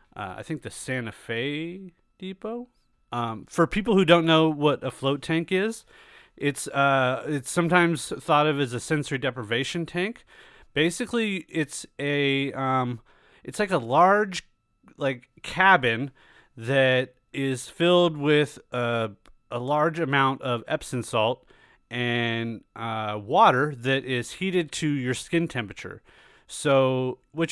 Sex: male